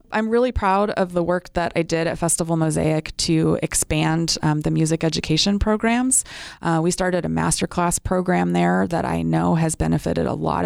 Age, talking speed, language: 20-39, 185 wpm, English